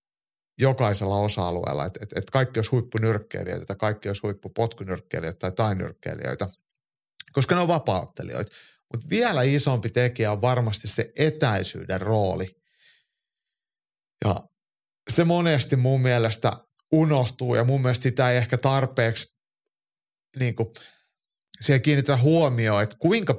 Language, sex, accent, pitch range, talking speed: Finnish, male, native, 105-135 Hz, 115 wpm